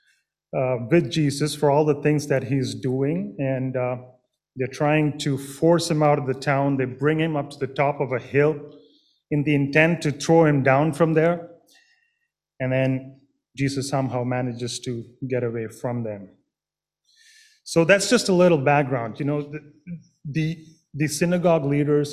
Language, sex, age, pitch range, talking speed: English, male, 30-49, 130-155 Hz, 170 wpm